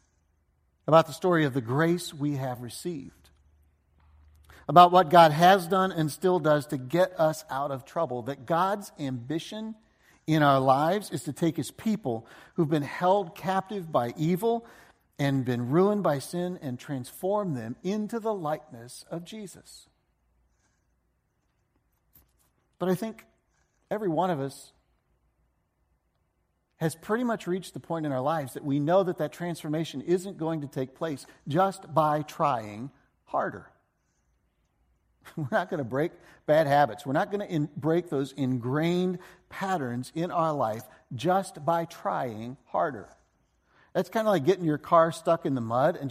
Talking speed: 155 wpm